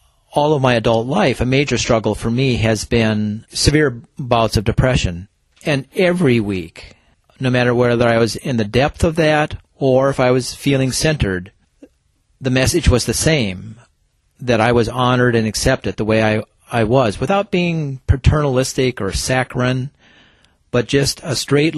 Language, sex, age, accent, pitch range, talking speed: English, male, 40-59, American, 105-130 Hz, 165 wpm